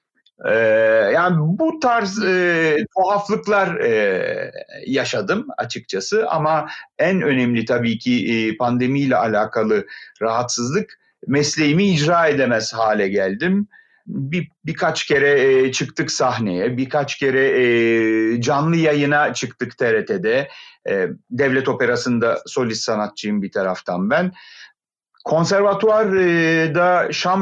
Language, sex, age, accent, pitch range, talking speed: Turkish, male, 40-59, native, 120-190 Hz, 100 wpm